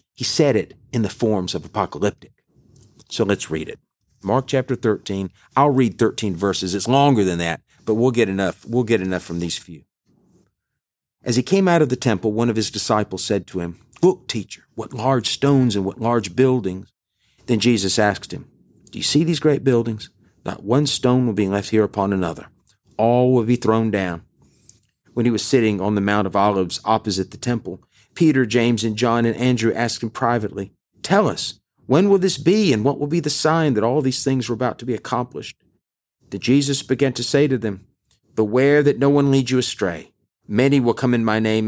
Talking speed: 205 wpm